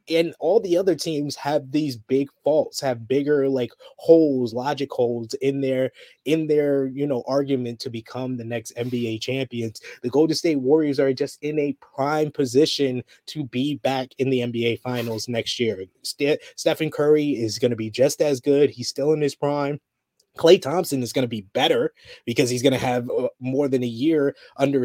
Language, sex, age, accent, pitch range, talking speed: English, male, 20-39, American, 125-150 Hz, 190 wpm